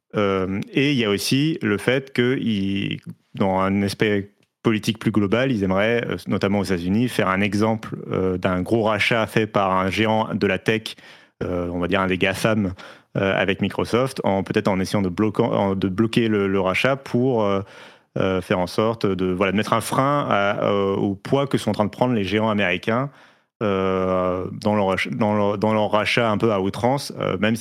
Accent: French